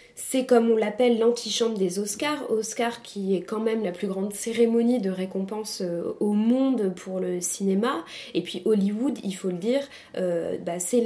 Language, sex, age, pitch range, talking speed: French, female, 20-39, 195-240 Hz, 180 wpm